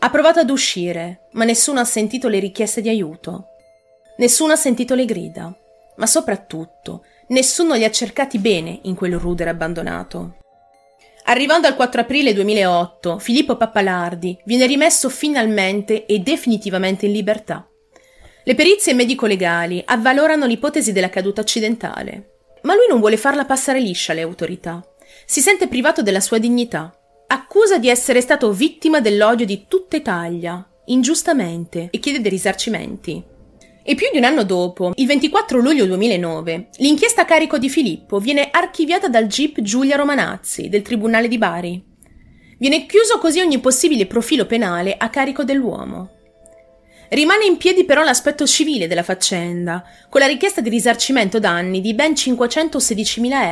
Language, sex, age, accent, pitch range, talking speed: Italian, female, 30-49, native, 180-275 Hz, 145 wpm